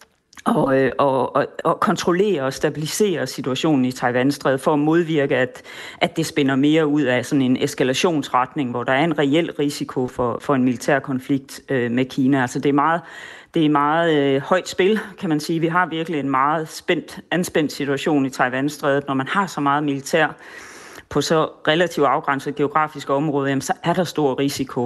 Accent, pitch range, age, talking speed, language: native, 135-165 Hz, 30-49, 180 wpm, Danish